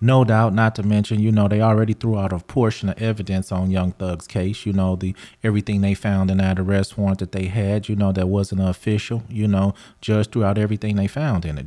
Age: 30-49